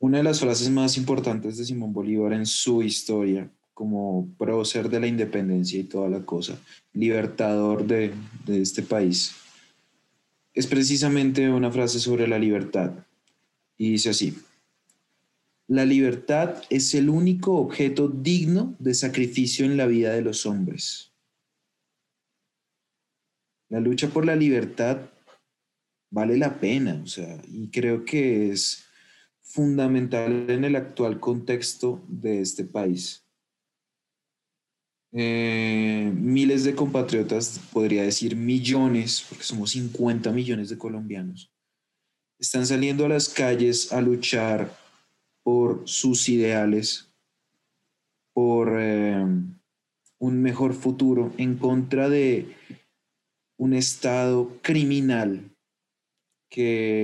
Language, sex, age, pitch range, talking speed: Spanish, male, 30-49, 110-130 Hz, 115 wpm